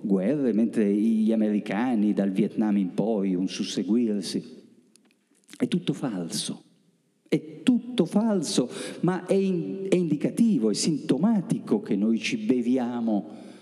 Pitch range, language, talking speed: 135-195 Hz, Italian, 120 wpm